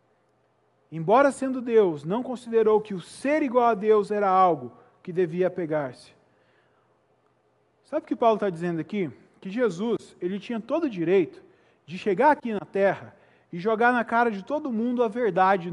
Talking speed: 170 wpm